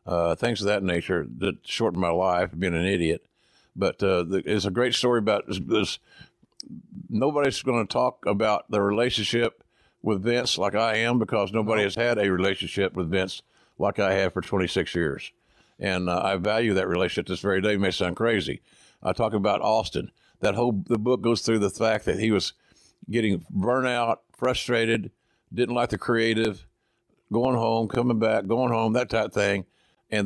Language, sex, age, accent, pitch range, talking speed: English, male, 50-69, American, 90-110 Hz, 190 wpm